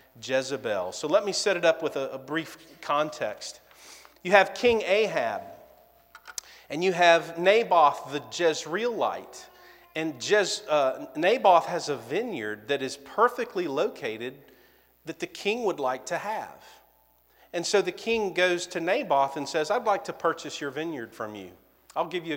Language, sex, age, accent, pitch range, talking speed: English, male, 40-59, American, 140-205 Hz, 160 wpm